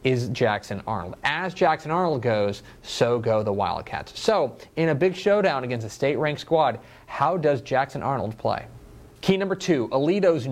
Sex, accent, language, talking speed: male, American, English, 165 wpm